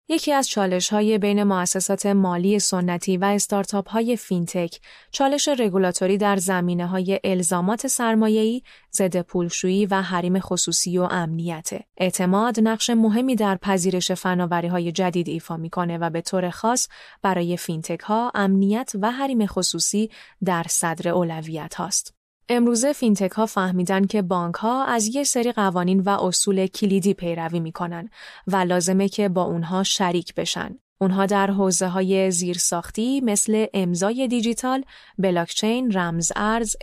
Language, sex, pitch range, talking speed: Persian, female, 180-220 Hz, 135 wpm